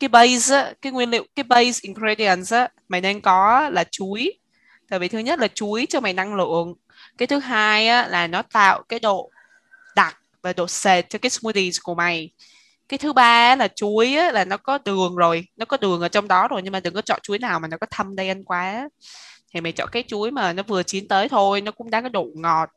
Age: 20-39